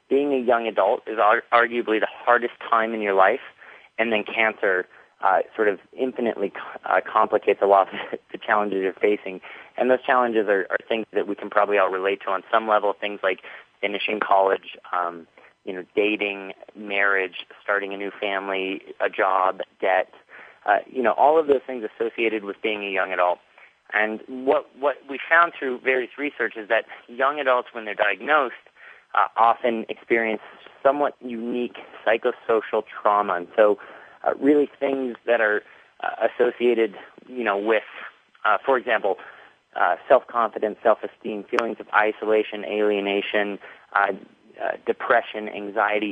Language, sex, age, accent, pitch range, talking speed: English, male, 30-49, American, 100-120 Hz, 160 wpm